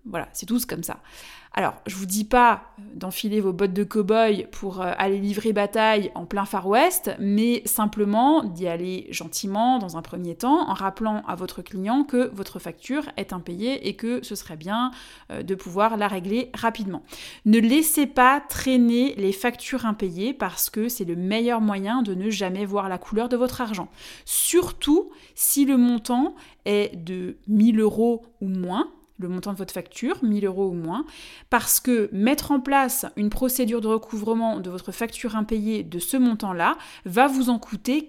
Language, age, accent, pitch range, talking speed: French, 20-39, French, 205-255 Hz, 180 wpm